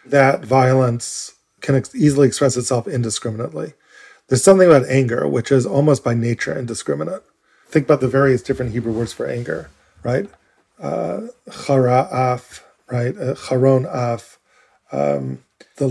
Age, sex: 40-59, male